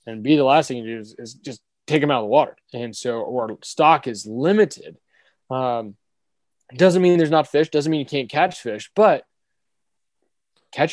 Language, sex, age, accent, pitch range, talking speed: English, male, 20-39, American, 120-155 Hz, 200 wpm